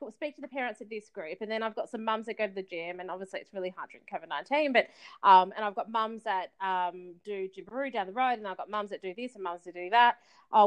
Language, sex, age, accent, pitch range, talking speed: English, female, 20-39, Australian, 185-235 Hz, 290 wpm